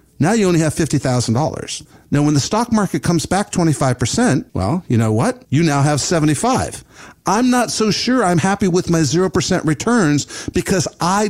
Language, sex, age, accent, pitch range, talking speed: English, male, 50-69, American, 140-190 Hz, 175 wpm